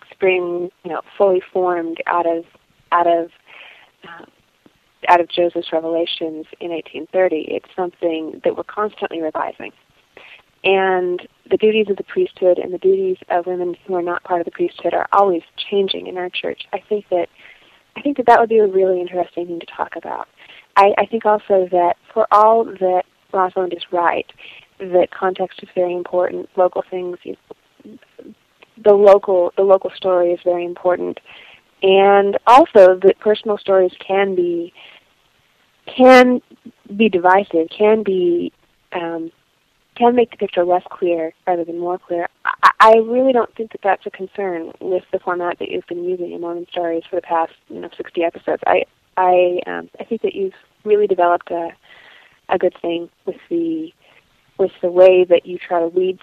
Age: 30-49